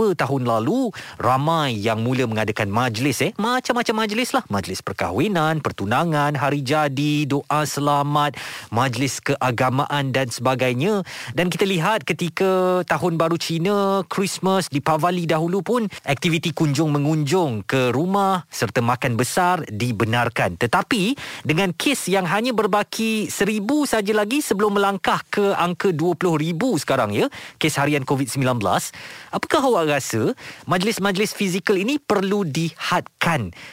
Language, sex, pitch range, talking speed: Malay, male, 130-185 Hz, 125 wpm